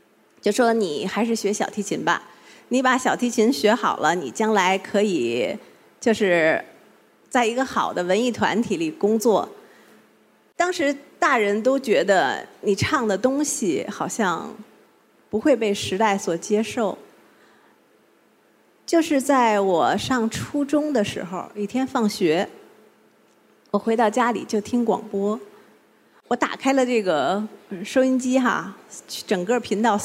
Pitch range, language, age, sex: 200-250 Hz, Chinese, 30-49, female